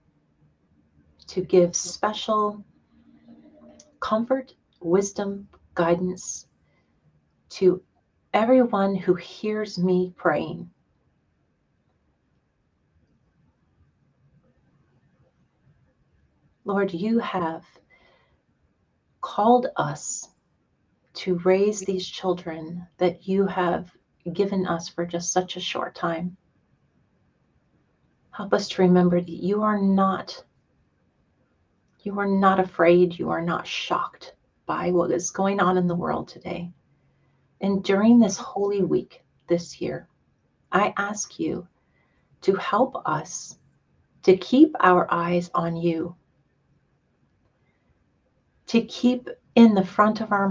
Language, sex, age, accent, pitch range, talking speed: English, female, 40-59, American, 175-200 Hz, 100 wpm